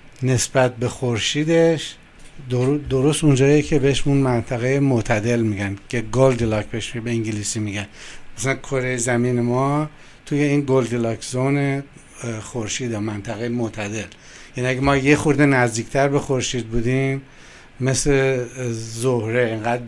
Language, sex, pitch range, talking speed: Persian, male, 120-140 Hz, 120 wpm